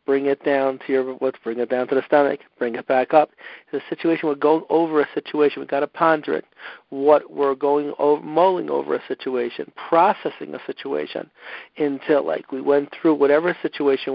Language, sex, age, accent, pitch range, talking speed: English, male, 50-69, American, 130-150 Hz, 195 wpm